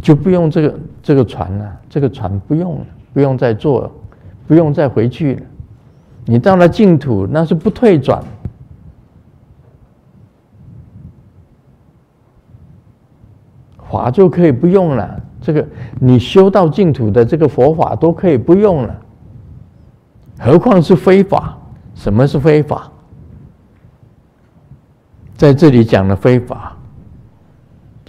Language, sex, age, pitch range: Chinese, male, 50-69, 115-170 Hz